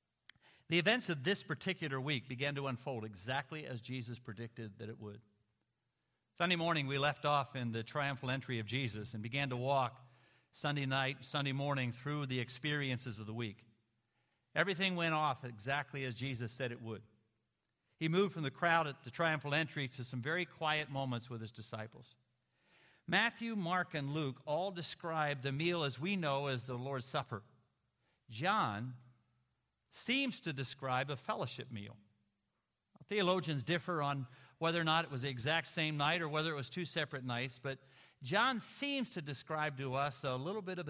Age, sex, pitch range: 50-69, male, 125-165 Hz